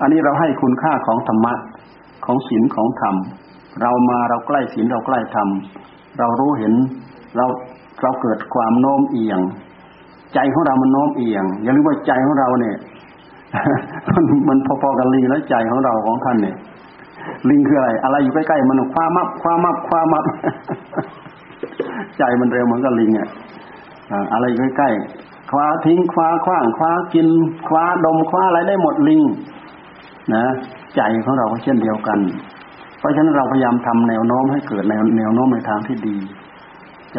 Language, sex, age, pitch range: Thai, male, 60-79, 110-150 Hz